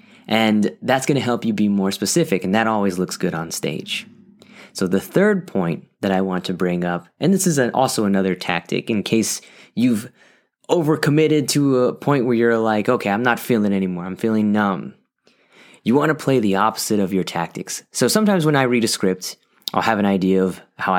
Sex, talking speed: male, 205 wpm